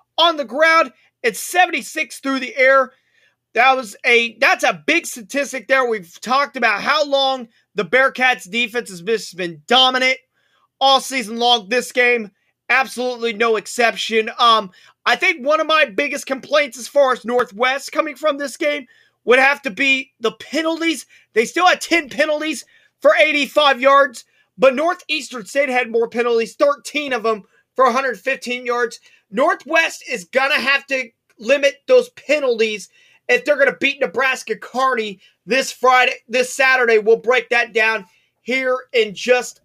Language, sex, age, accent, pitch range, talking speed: English, male, 30-49, American, 235-290 Hz, 155 wpm